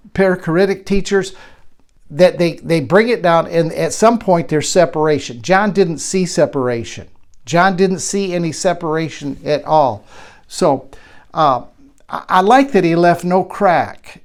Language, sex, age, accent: English, male, 50-69, American